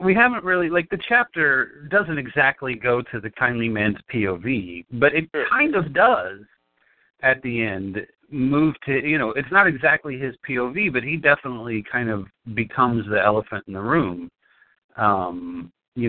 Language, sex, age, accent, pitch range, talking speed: English, male, 50-69, American, 100-140 Hz, 165 wpm